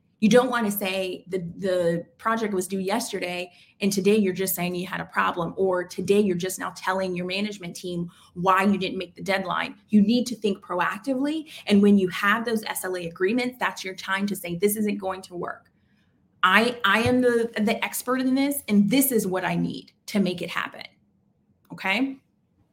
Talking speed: 200 wpm